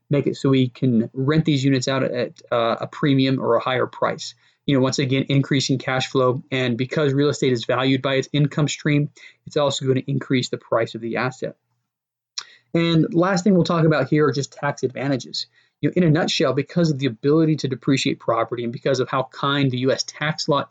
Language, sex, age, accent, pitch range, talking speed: English, male, 30-49, American, 135-160 Hz, 225 wpm